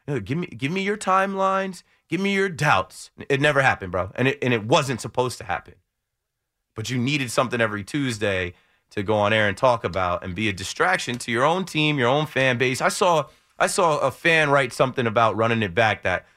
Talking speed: 220 wpm